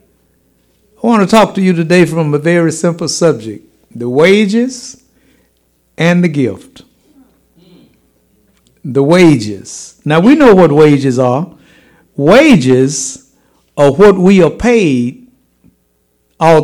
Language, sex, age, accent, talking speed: English, male, 60-79, American, 115 wpm